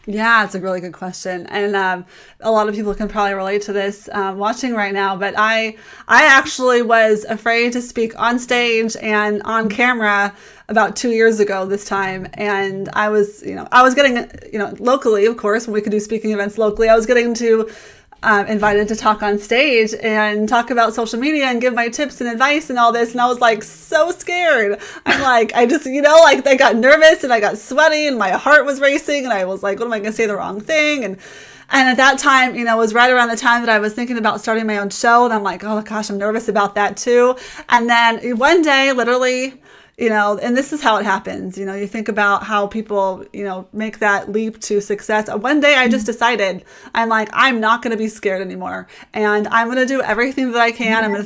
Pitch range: 205-240 Hz